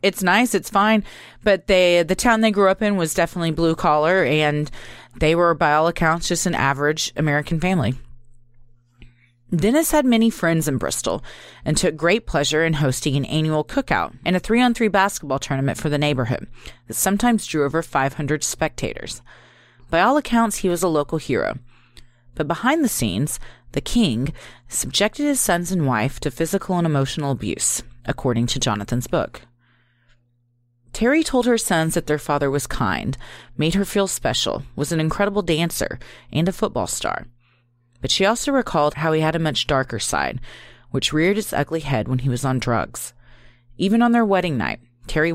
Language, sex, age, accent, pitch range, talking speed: English, female, 30-49, American, 125-185 Hz, 170 wpm